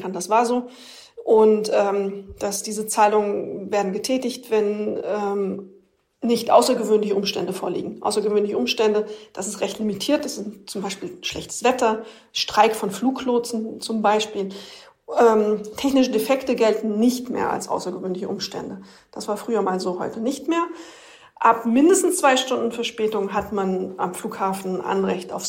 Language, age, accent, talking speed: German, 40-59, German, 145 wpm